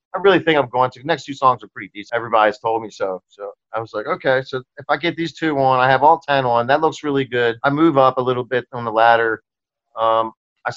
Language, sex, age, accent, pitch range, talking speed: English, male, 40-59, American, 120-145 Hz, 275 wpm